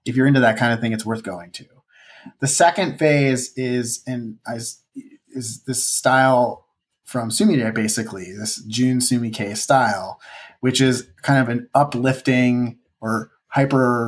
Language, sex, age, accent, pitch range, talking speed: English, male, 30-49, American, 115-135 Hz, 160 wpm